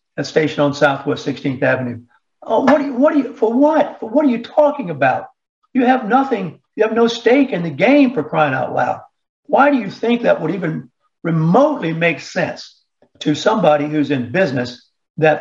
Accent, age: American, 60-79